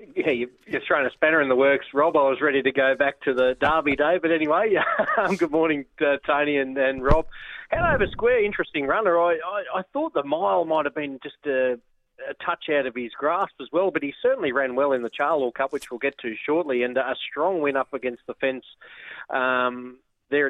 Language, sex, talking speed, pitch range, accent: English, male, 215 wpm, 125-150 Hz, Australian